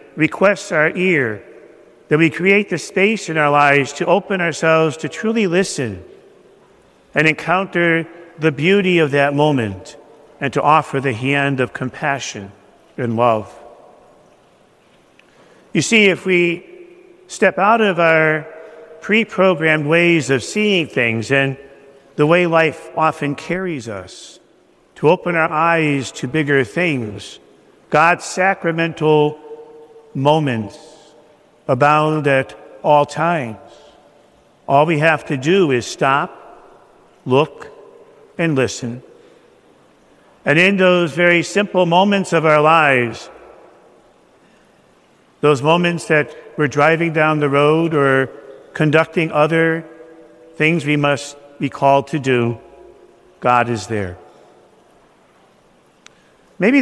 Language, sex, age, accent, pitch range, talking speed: English, male, 50-69, American, 140-170 Hz, 115 wpm